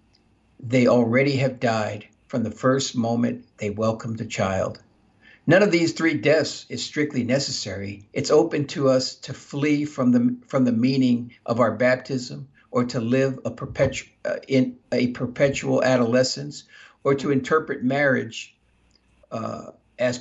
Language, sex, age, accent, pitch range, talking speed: English, male, 60-79, American, 115-140 Hz, 150 wpm